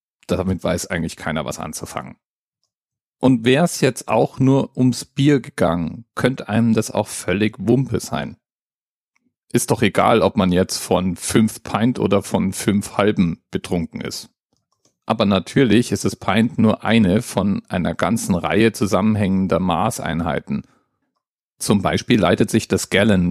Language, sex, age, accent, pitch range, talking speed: German, male, 40-59, German, 90-125 Hz, 145 wpm